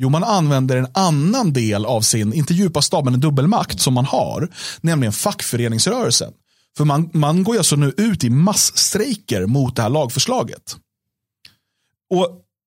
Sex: male